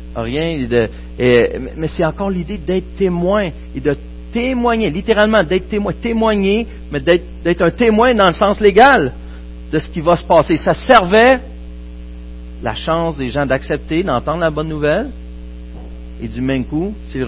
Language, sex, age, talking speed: French, male, 50-69, 165 wpm